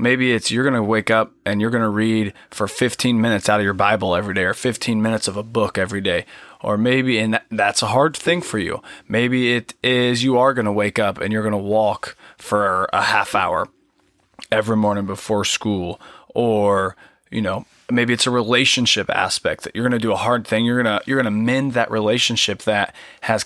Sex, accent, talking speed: male, American, 225 wpm